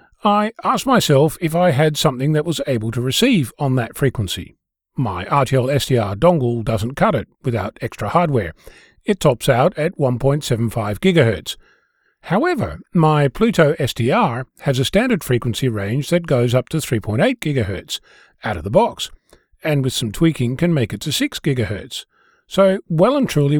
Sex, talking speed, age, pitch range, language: male, 160 wpm, 40-59, 120-175 Hz, English